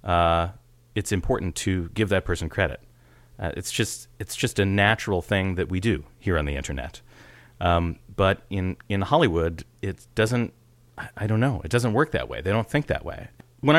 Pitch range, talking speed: 85-120 Hz, 220 wpm